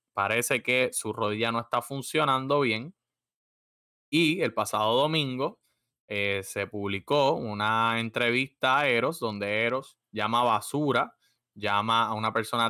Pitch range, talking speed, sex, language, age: 105-130 Hz, 130 wpm, male, English, 20-39